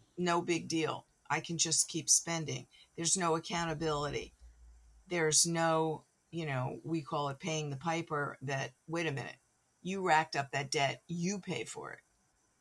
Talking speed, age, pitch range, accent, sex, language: 160 wpm, 50-69, 145-175 Hz, American, female, English